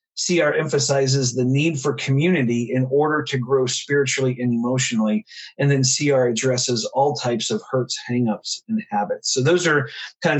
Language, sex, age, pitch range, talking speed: English, male, 40-59, 130-155 Hz, 160 wpm